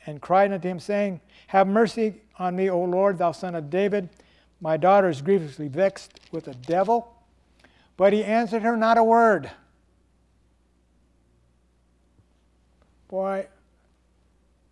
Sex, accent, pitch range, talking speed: male, American, 170-220 Hz, 125 wpm